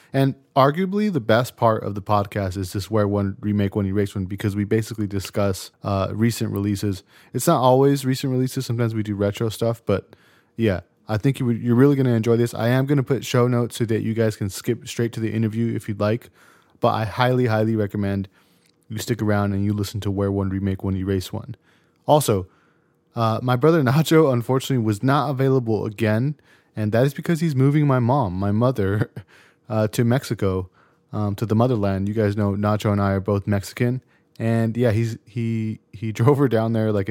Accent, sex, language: American, male, English